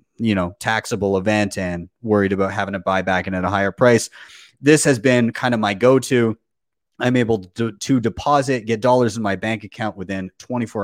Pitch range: 105-140 Hz